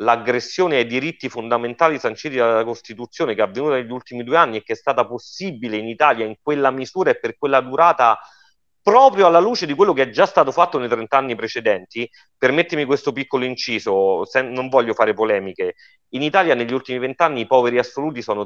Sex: male